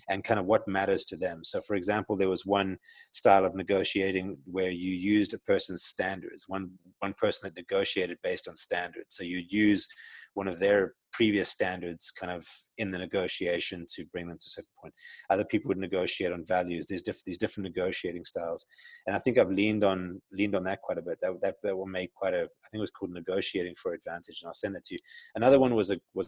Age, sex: 30-49, male